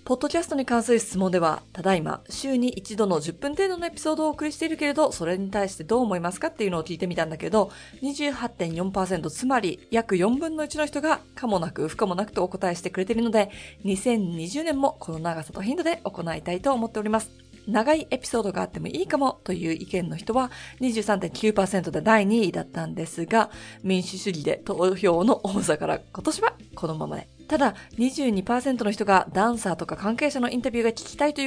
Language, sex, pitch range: Japanese, female, 180-270 Hz